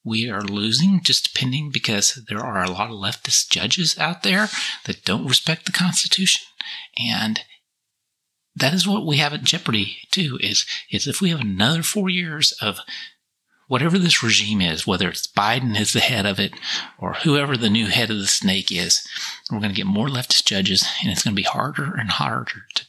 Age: 40-59